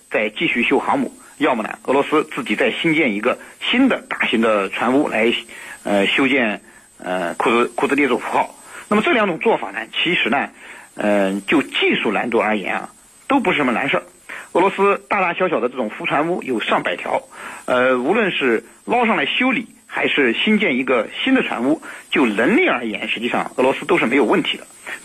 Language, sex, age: Chinese, male, 50-69